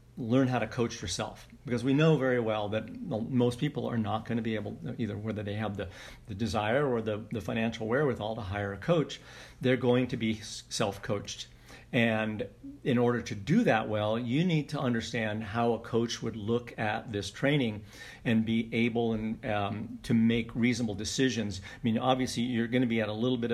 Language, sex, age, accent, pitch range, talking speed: English, male, 50-69, American, 110-125 Hz, 200 wpm